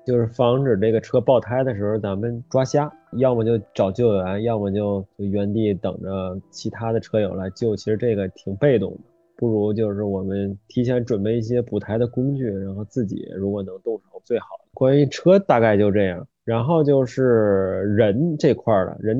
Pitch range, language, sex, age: 105-130 Hz, Chinese, male, 20-39